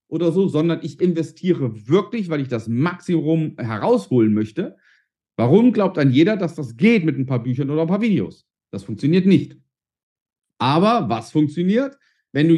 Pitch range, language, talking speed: 130-200 Hz, German, 165 wpm